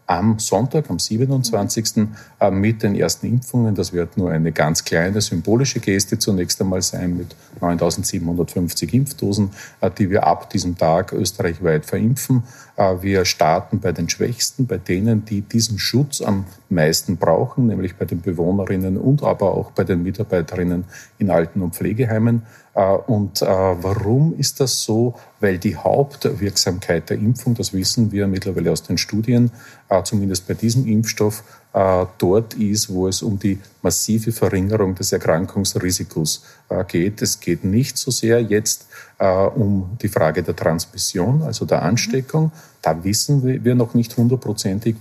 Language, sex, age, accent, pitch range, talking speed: German, male, 40-59, Austrian, 95-120 Hz, 145 wpm